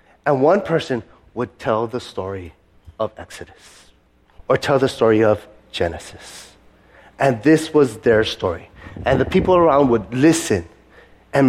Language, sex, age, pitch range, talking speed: English, male, 30-49, 100-155 Hz, 140 wpm